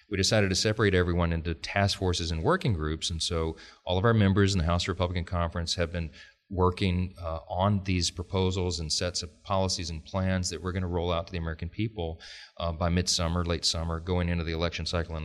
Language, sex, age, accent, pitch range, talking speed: English, male, 40-59, American, 85-105 Hz, 220 wpm